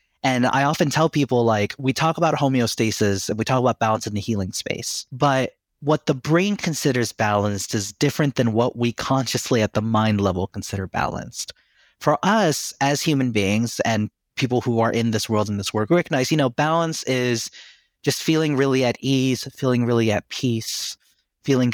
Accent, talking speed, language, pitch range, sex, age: American, 190 wpm, English, 110-145 Hz, male, 30-49